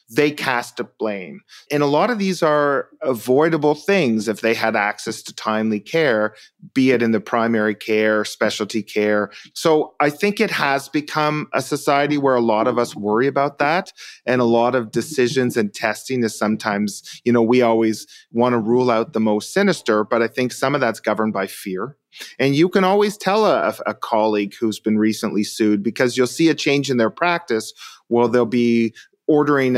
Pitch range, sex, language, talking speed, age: 110-140 Hz, male, English, 195 wpm, 30-49